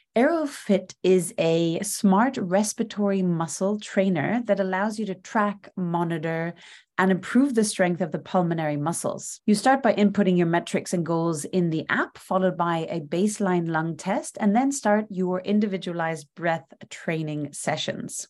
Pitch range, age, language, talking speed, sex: 180-225 Hz, 30-49, English, 150 wpm, female